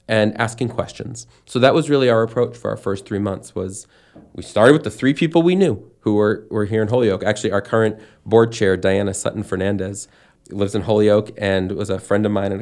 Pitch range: 100-120 Hz